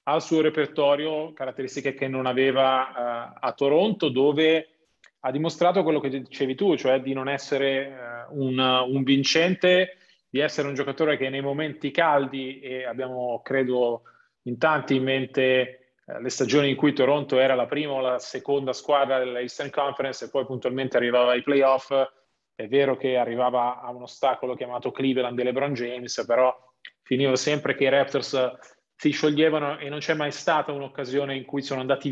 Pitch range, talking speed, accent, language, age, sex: 130-155 Hz, 175 wpm, native, Italian, 30-49, male